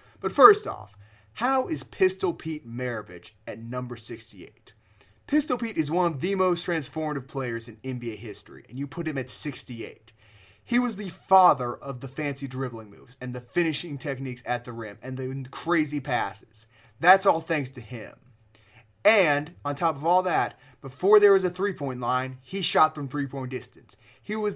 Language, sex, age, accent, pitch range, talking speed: English, male, 20-39, American, 120-160 Hz, 180 wpm